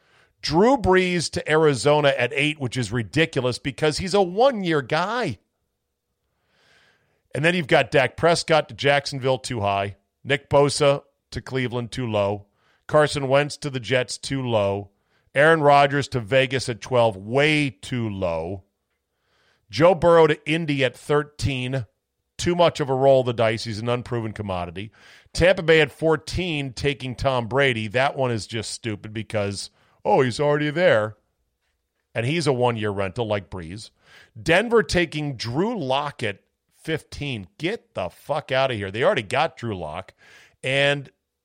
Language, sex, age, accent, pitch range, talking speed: English, male, 40-59, American, 110-150 Hz, 155 wpm